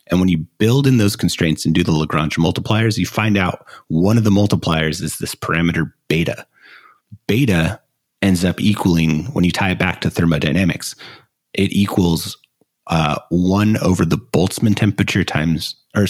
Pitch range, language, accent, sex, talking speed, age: 80-105 Hz, English, American, male, 165 wpm, 30-49